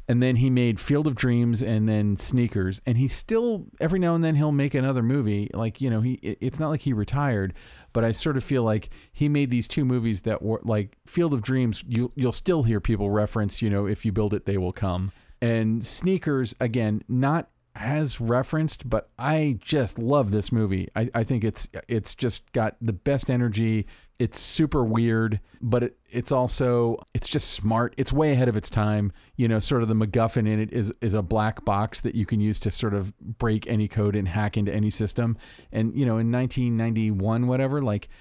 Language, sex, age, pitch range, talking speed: English, male, 40-59, 105-125 Hz, 210 wpm